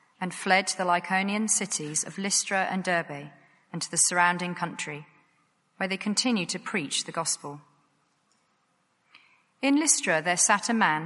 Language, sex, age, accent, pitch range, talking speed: English, female, 40-59, British, 175-225 Hz, 150 wpm